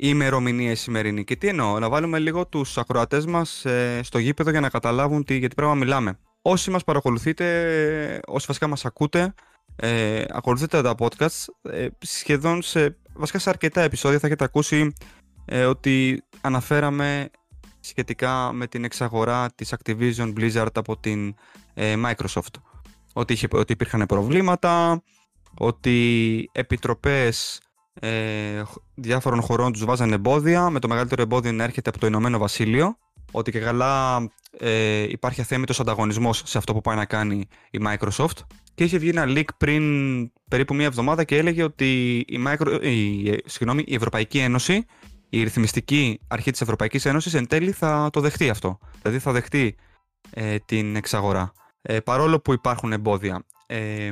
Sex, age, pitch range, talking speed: male, 20-39, 110-150 Hz, 145 wpm